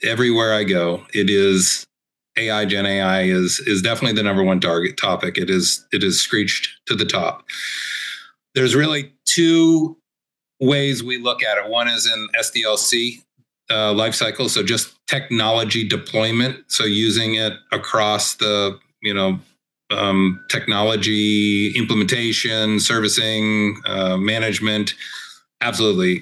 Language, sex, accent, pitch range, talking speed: English, male, American, 95-115 Hz, 130 wpm